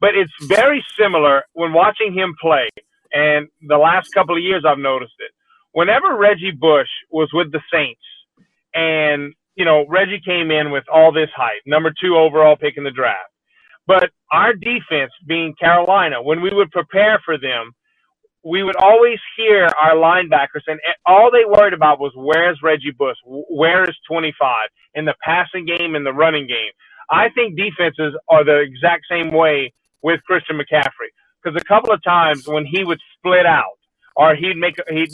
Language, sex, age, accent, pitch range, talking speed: English, male, 30-49, American, 155-200 Hz, 175 wpm